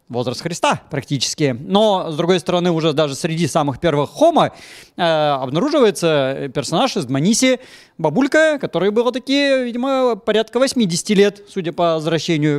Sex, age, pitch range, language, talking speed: male, 30-49, 160-225 Hz, Russian, 135 wpm